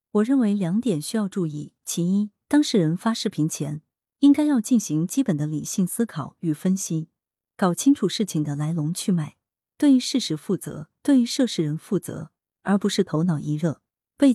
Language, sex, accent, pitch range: Chinese, female, native, 160-235 Hz